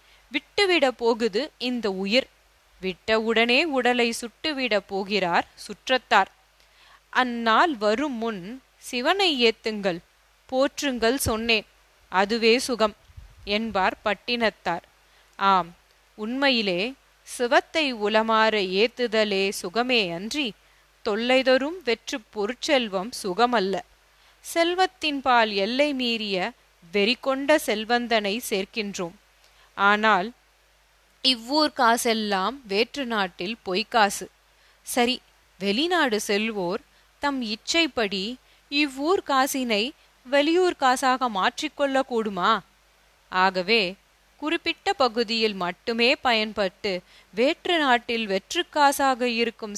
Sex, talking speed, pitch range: female, 75 wpm, 210-265 Hz